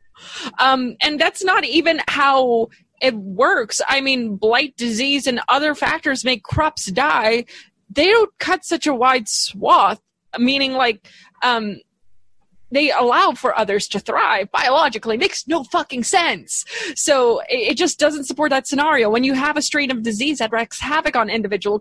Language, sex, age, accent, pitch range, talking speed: English, female, 20-39, American, 215-300 Hz, 160 wpm